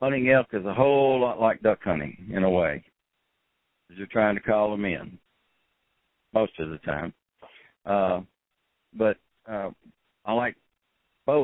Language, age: English, 60-79